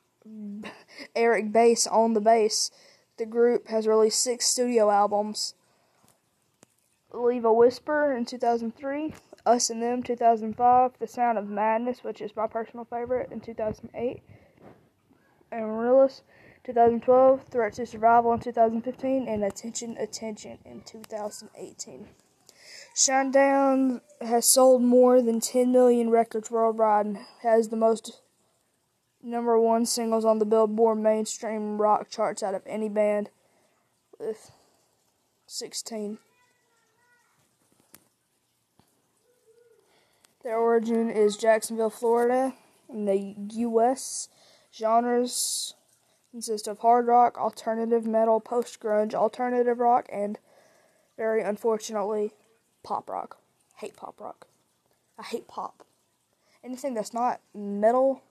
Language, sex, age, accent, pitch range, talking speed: English, female, 20-39, American, 220-245 Hz, 110 wpm